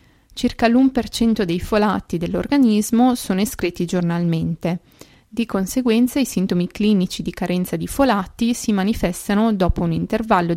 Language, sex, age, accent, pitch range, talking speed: Italian, female, 20-39, native, 180-235 Hz, 125 wpm